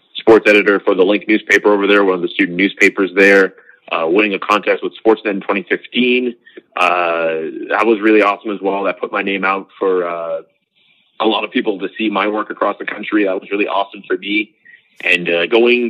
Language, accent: English, American